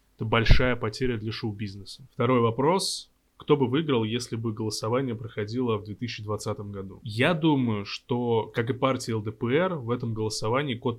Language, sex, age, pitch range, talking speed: Russian, male, 20-39, 110-130 Hz, 155 wpm